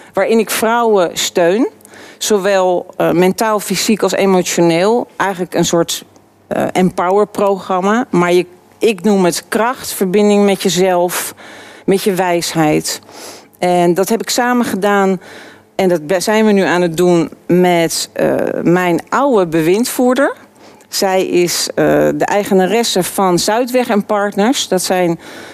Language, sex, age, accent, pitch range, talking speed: Dutch, female, 50-69, Dutch, 175-210 Hz, 135 wpm